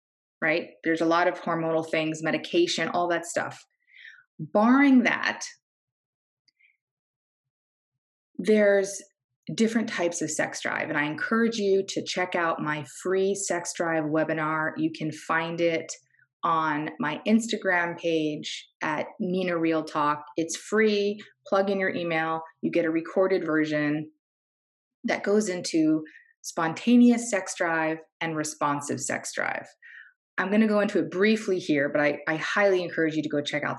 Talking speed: 145 wpm